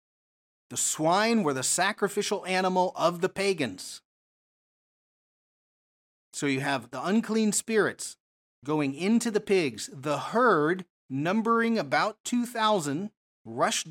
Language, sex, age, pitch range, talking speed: English, male, 40-59, 135-205 Hz, 110 wpm